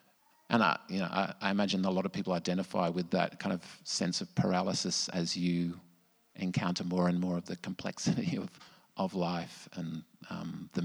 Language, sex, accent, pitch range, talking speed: English, male, Australian, 90-150 Hz, 190 wpm